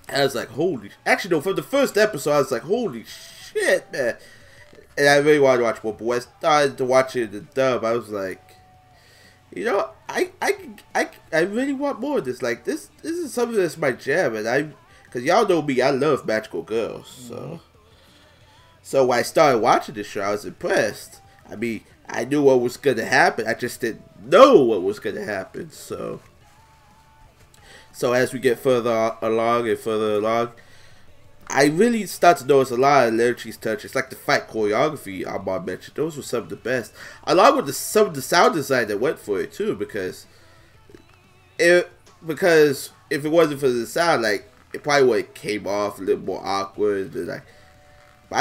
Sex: male